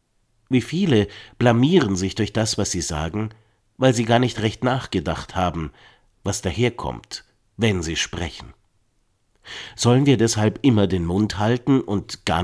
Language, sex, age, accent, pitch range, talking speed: German, male, 50-69, German, 95-120 Hz, 145 wpm